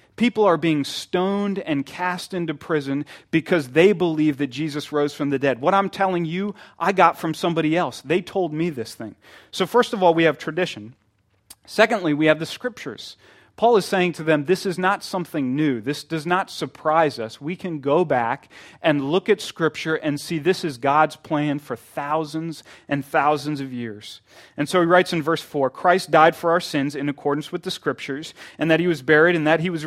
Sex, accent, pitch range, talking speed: male, American, 140-175 Hz, 210 wpm